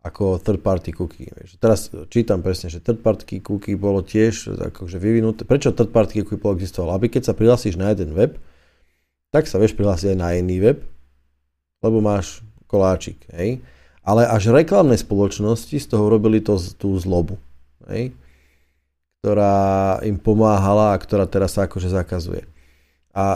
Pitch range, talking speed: 85-110 Hz, 155 wpm